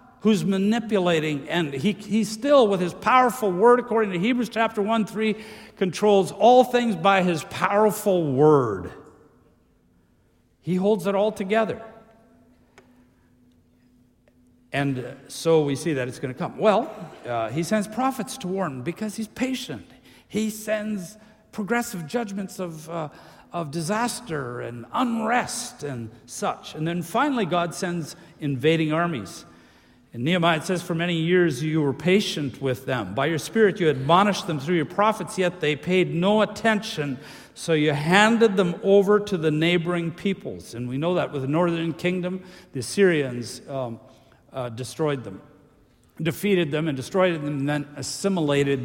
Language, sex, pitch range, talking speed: English, male, 140-210 Hz, 150 wpm